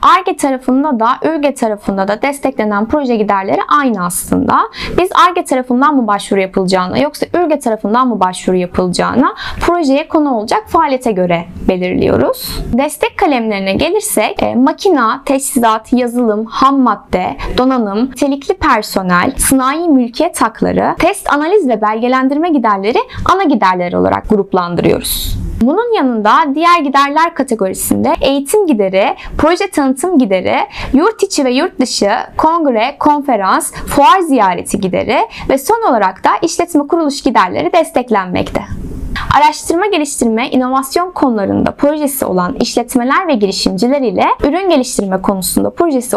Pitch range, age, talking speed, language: 215-320 Hz, 10-29, 120 wpm, Turkish